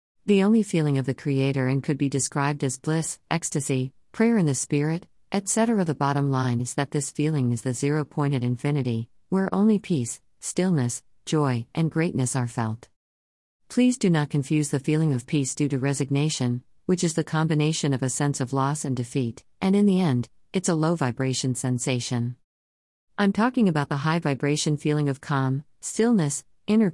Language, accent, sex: English, American, female